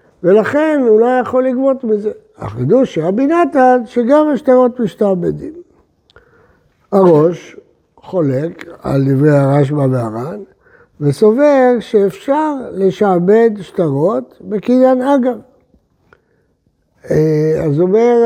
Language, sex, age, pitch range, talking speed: Hebrew, male, 60-79, 160-245 Hz, 90 wpm